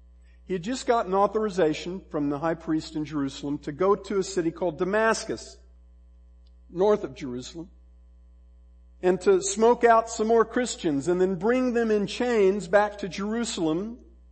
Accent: American